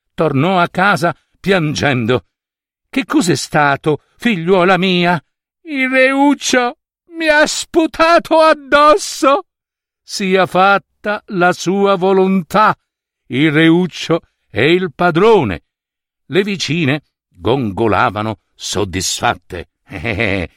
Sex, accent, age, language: male, native, 60-79, Italian